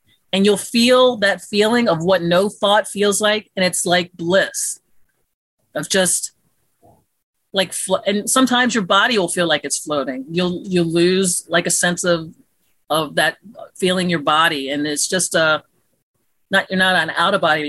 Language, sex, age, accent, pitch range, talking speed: English, female, 40-59, American, 165-210 Hz, 170 wpm